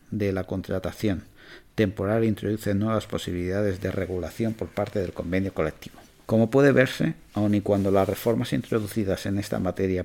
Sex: male